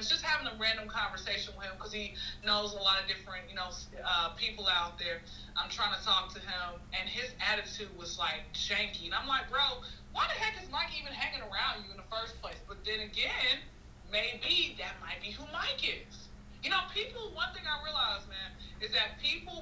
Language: English